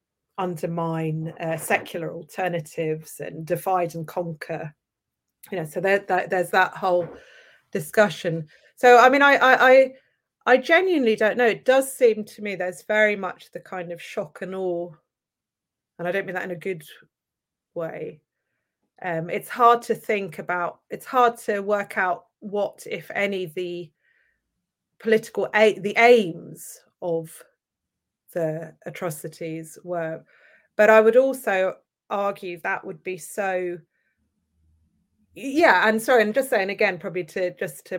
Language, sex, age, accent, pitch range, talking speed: English, female, 30-49, British, 165-215 Hz, 145 wpm